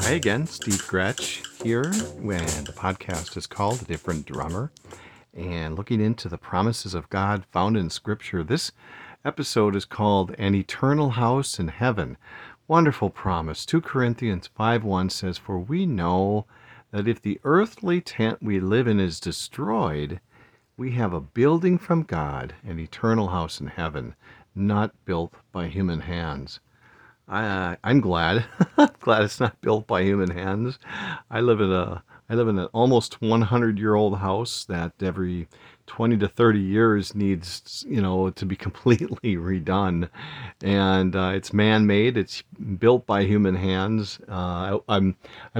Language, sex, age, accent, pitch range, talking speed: English, male, 50-69, American, 95-115 Hz, 150 wpm